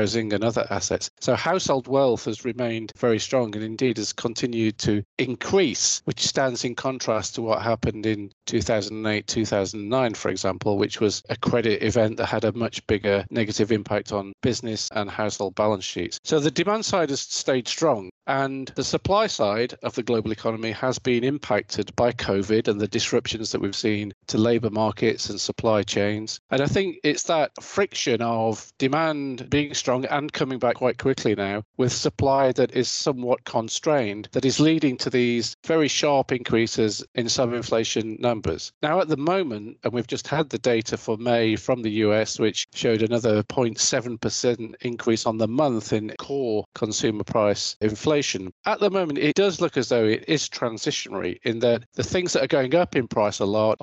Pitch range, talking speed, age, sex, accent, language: 110-130 Hz, 180 wpm, 40-59, male, British, English